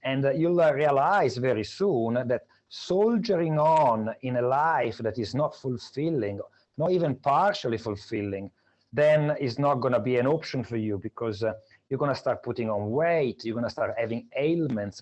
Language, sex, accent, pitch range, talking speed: English, male, Italian, 115-150 Hz, 170 wpm